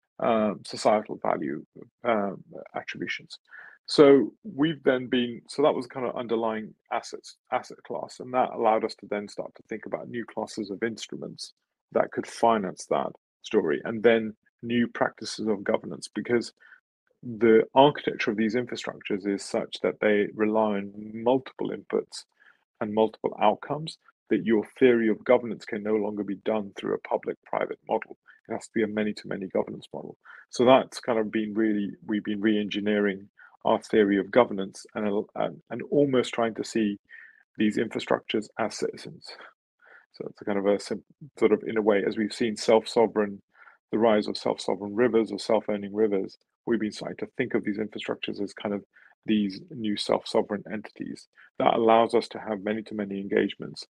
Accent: British